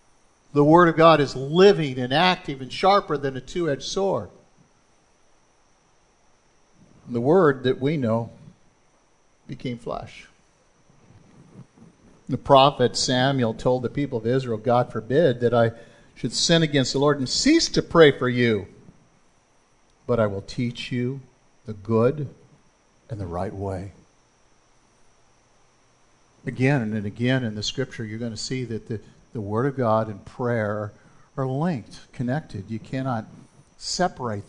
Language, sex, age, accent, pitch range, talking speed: English, male, 50-69, American, 115-145 Hz, 135 wpm